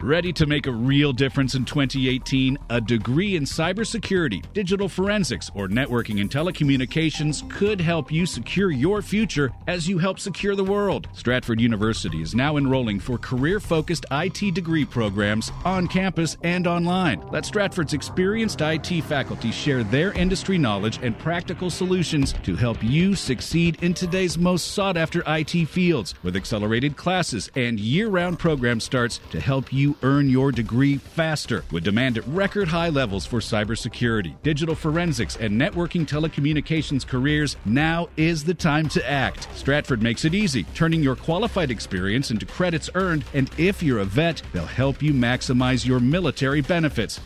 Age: 50-69